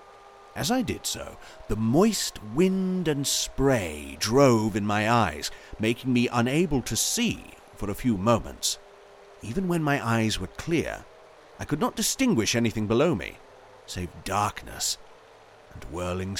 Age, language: 40-59, English